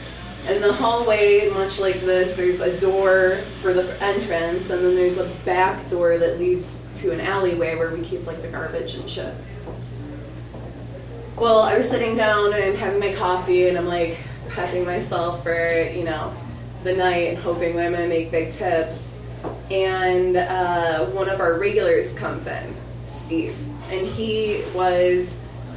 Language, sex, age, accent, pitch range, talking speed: English, female, 20-39, American, 165-200 Hz, 165 wpm